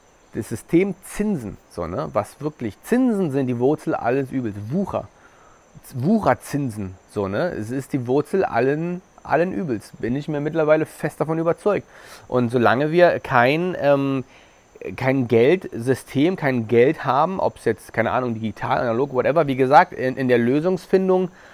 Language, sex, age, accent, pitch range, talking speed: German, male, 30-49, German, 125-175 Hz, 150 wpm